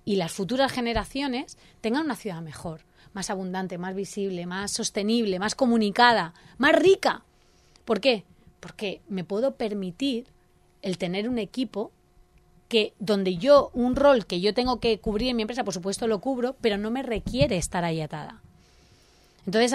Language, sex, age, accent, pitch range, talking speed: Spanish, female, 30-49, Spanish, 190-245 Hz, 160 wpm